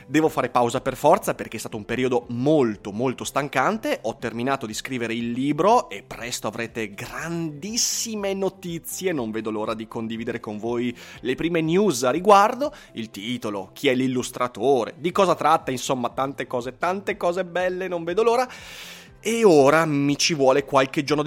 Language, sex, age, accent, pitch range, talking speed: Italian, male, 30-49, native, 120-170 Hz, 170 wpm